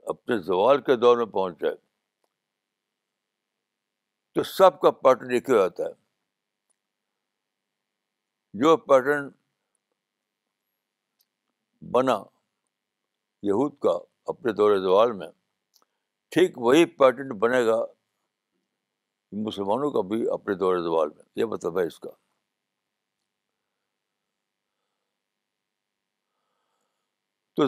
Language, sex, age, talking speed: Urdu, male, 60-79, 85 wpm